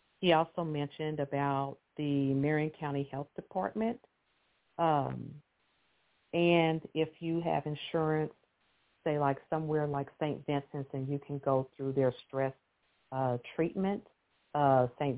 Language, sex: English, female